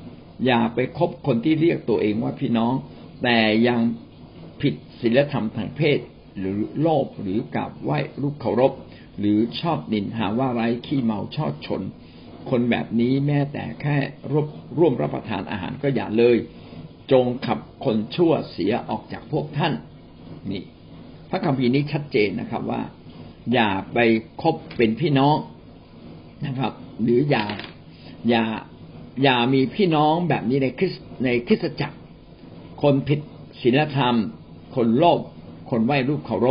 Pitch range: 115-145 Hz